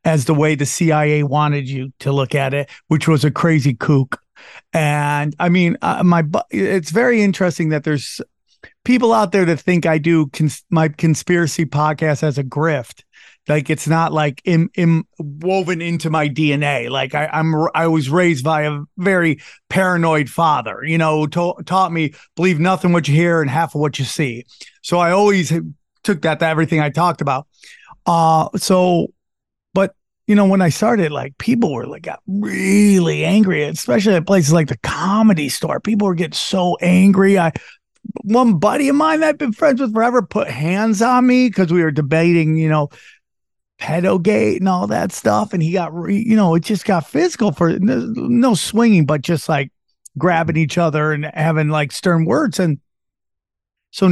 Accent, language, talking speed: American, English, 185 wpm